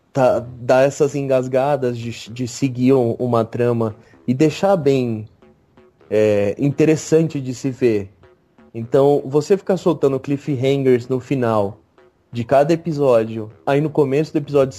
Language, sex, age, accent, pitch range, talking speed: Portuguese, male, 30-49, Brazilian, 120-140 Hz, 125 wpm